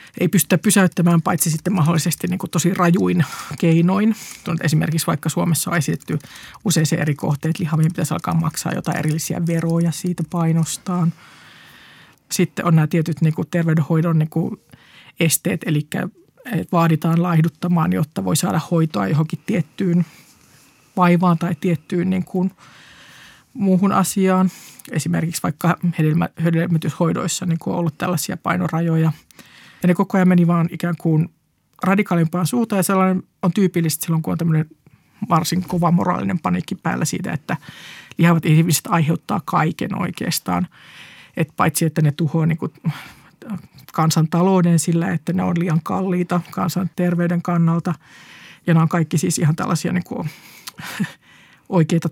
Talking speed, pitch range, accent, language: 130 wpm, 160-180 Hz, native, Finnish